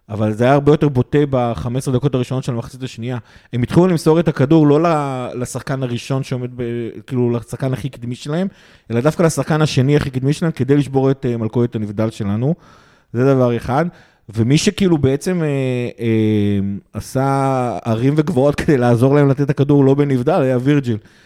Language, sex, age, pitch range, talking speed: Hebrew, male, 30-49, 120-145 Hz, 170 wpm